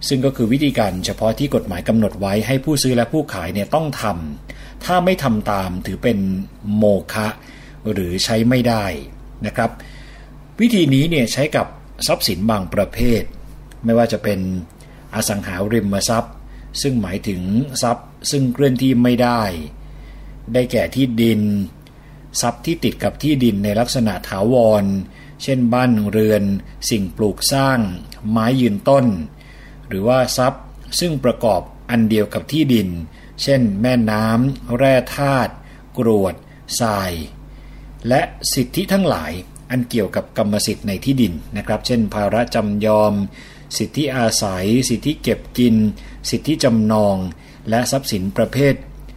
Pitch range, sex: 105-135 Hz, male